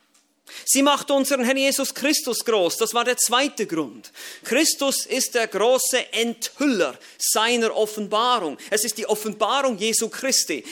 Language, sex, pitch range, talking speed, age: German, male, 195-255 Hz, 140 wpm, 40-59